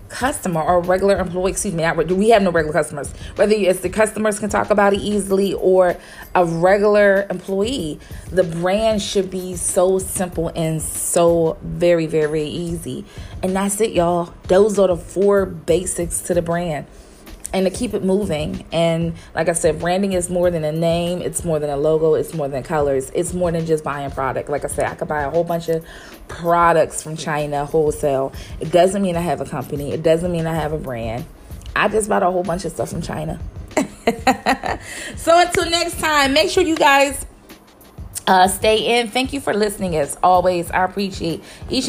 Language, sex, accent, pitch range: English, female, American, 160-200 Hz